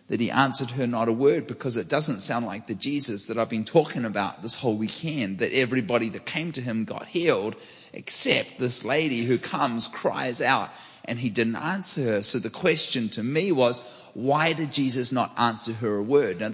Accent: Australian